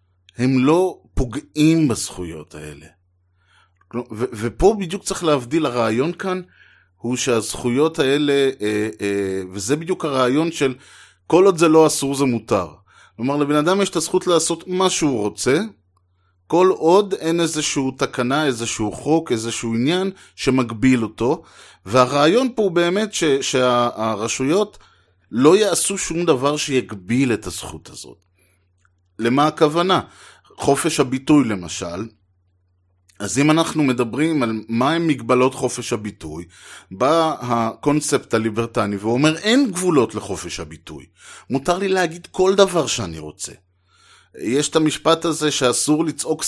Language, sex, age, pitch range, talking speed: Hebrew, male, 30-49, 110-160 Hz, 130 wpm